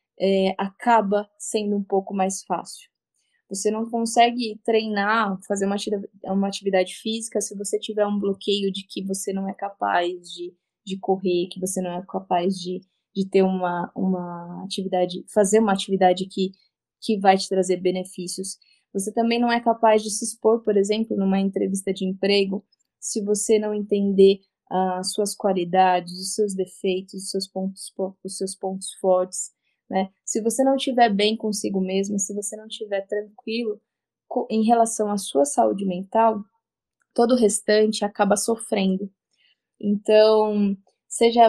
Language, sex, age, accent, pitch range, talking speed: Portuguese, female, 10-29, Brazilian, 190-215 Hz, 150 wpm